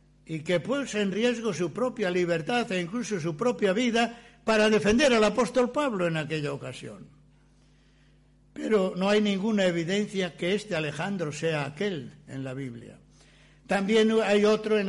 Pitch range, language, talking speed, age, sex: 155-210 Hz, Spanish, 155 wpm, 60-79, male